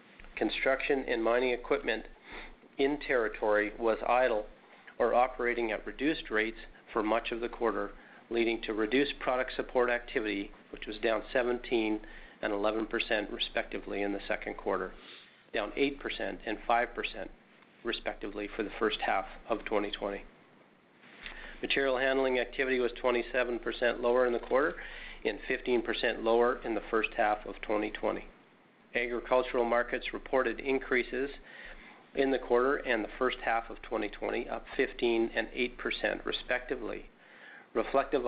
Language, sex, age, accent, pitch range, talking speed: English, male, 40-59, American, 110-125 Hz, 130 wpm